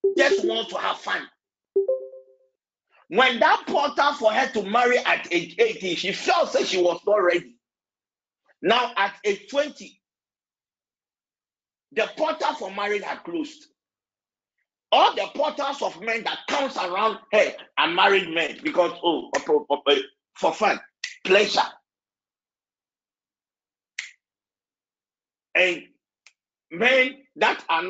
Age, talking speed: 50-69, 115 wpm